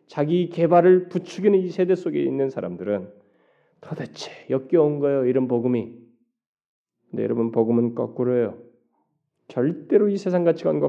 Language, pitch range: Korean, 120-160 Hz